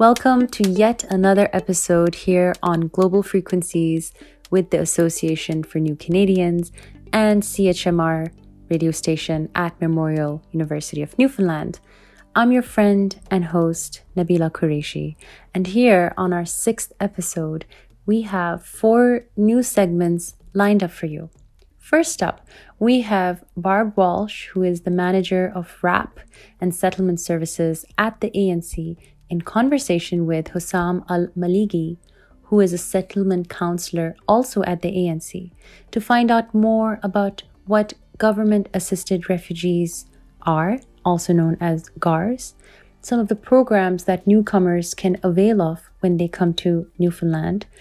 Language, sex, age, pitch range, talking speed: English, female, 20-39, 170-205 Hz, 130 wpm